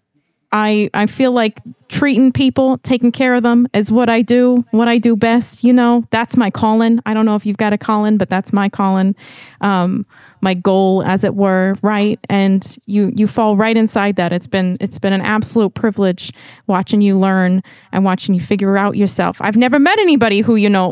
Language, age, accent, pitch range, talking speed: English, 20-39, American, 200-255 Hz, 205 wpm